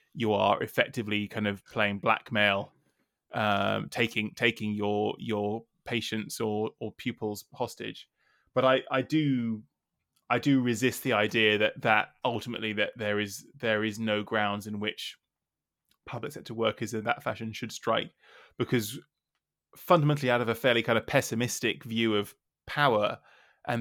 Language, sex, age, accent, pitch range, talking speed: English, male, 20-39, British, 110-120 Hz, 150 wpm